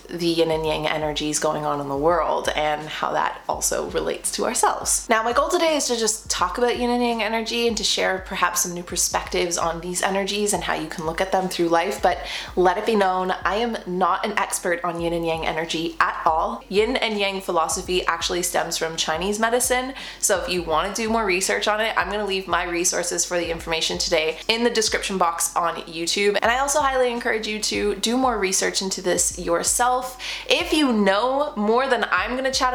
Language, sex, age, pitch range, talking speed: English, female, 20-39, 180-240 Hz, 225 wpm